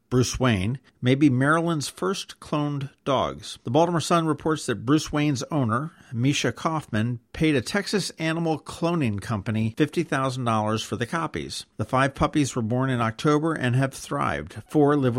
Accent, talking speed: American, 160 wpm